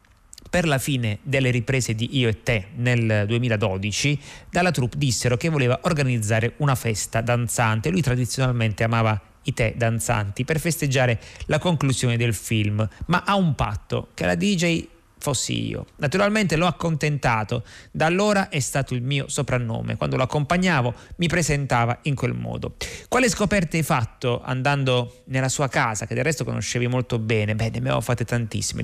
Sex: male